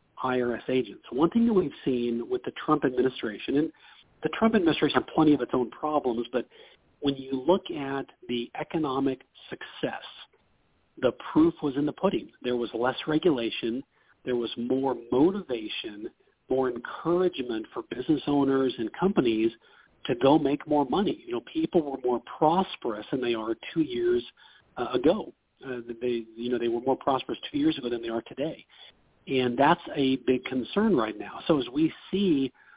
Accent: American